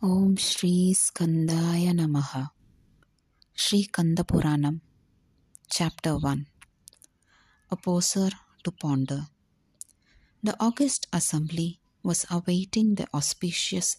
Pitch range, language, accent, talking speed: 145-200 Hz, Tamil, native, 80 wpm